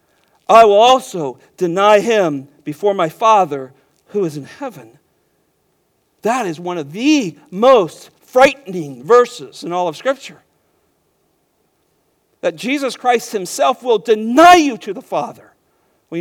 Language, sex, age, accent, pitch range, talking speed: English, male, 50-69, American, 155-225 Hz, 130 wpm